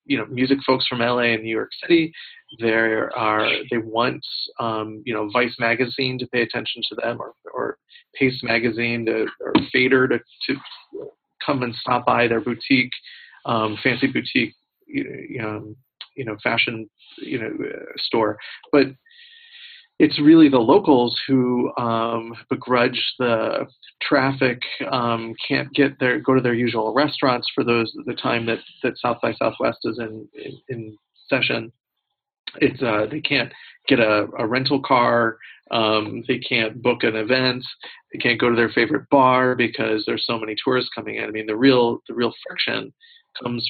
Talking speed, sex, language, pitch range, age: 165 wpm, male, English, 115-140 Hz, 40-59